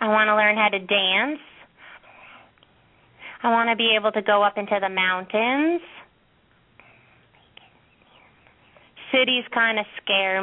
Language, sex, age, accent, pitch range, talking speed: English, female, 30-49, American, 185-215 Hz, 125 wpm